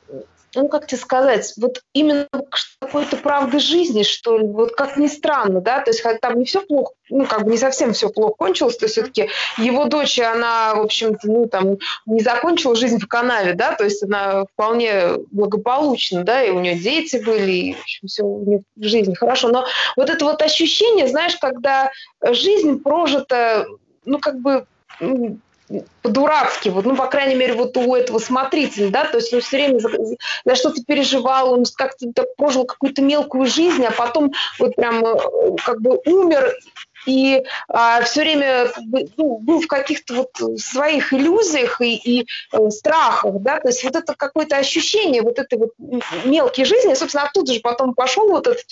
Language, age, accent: Russian, 20-39, native